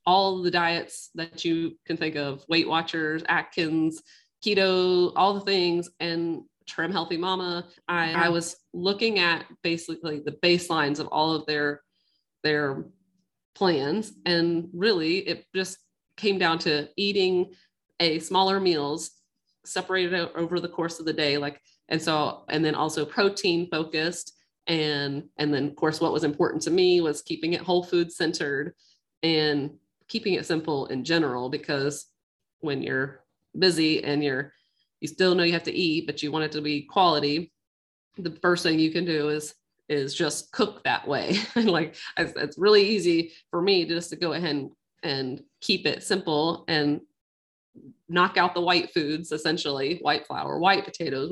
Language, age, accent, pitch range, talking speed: English, 30-49, American, 150-180 Hz, 165 wpm